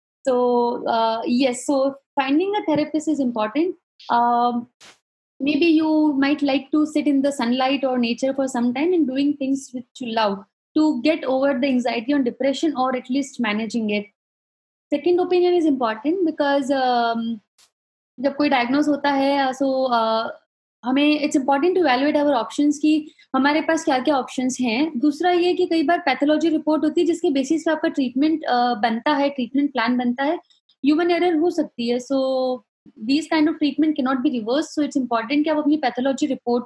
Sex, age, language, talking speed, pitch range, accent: female, 20-39, English, 180 wpm, 255-315 Hz, Indian